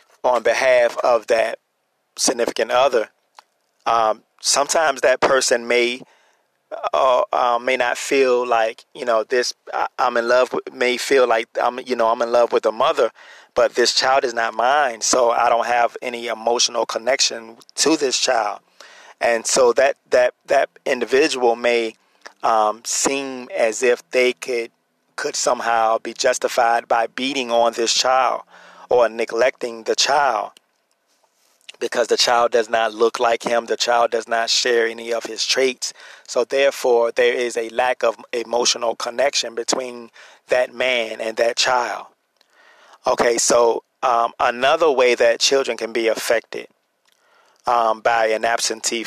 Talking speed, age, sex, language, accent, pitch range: 155 wpm, 30-49, male, English, American, 115-125 Hz